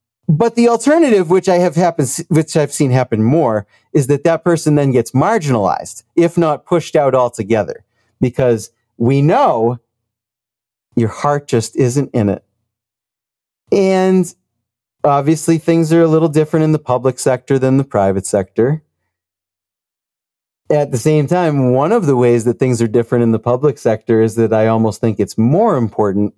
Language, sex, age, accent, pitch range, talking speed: English, male, 30-49, American, 110-145 Hz, 165 wpm